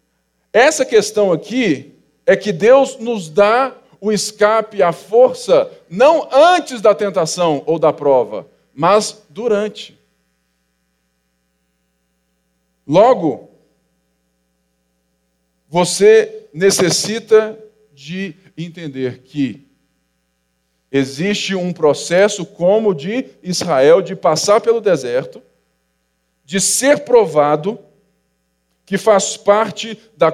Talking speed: 90 wpm